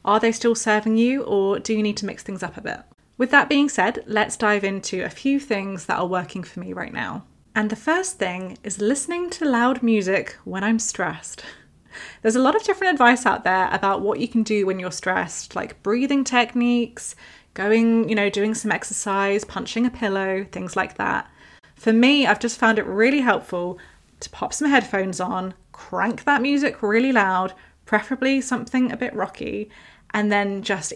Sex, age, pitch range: female, 20-39, 195-245 Hz